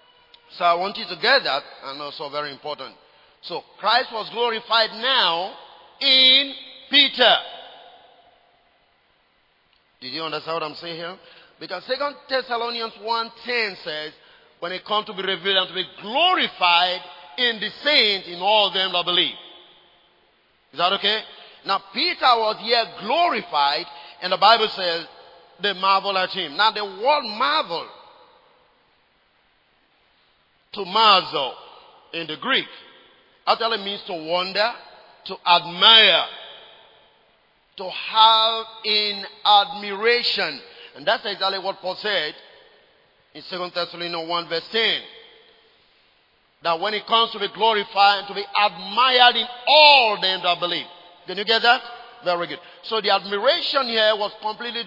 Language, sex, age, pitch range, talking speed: English, male, 40-59, 175-240 Hz, 135 wpm